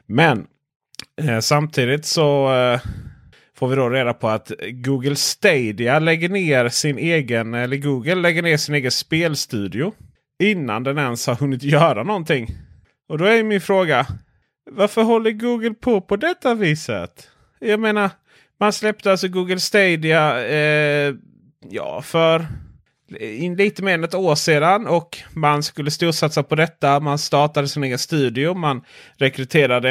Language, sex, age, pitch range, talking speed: Swedish, male, 30-49, 125-170 Hz, 150 wpm